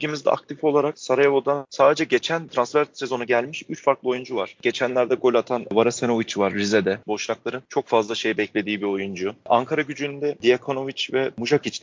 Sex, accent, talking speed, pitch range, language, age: male, native, 155 wpm, 120-150 Hz, Turkish, 30-49